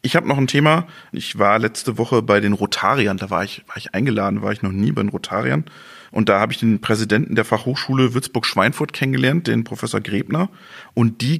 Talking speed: 210 wpm